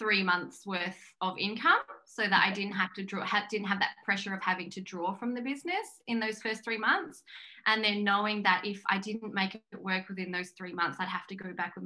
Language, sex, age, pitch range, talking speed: English, female, 20-39, 180-220 Hz, 245 wpm